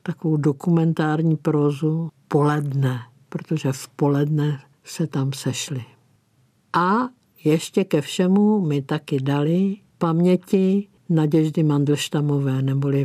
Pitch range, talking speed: 140-165 Hz, 95 wpm